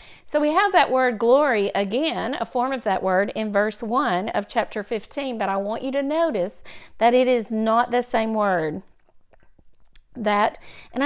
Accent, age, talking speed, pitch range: American, 50-69, 180 wpm, 205-255 Hz